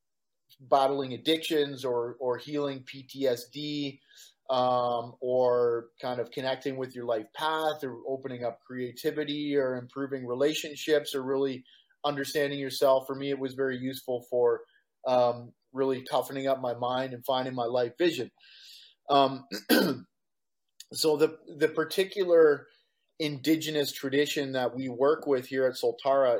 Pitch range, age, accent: 125-150 Hz, 30-49, American